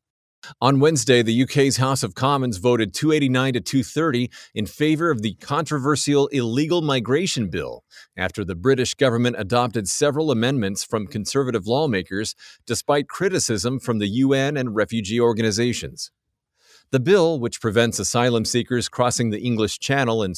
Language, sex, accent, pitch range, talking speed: English, male, American, 110-135 Hz, 140 wpm